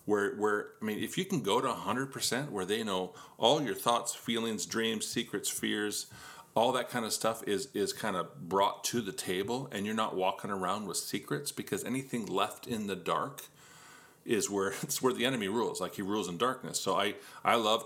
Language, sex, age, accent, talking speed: English, male, 40-59, American, 210 wpm